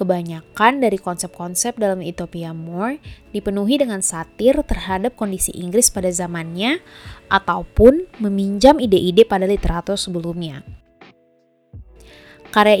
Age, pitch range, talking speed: 20-39, 175-215 Hz, 100 wpm